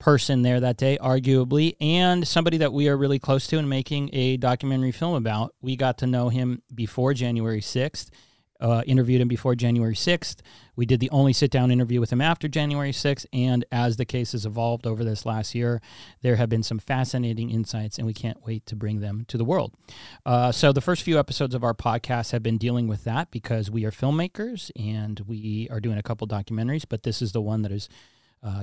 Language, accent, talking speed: English, American, 220 wpm